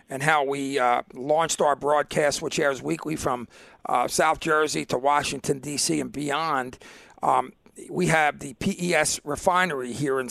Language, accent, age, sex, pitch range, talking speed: English, American, 50-69, male, 140-170 Hz, 155 wpm